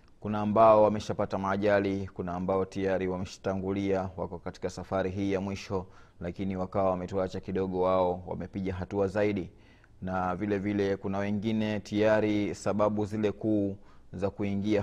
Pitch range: 90-105 Hz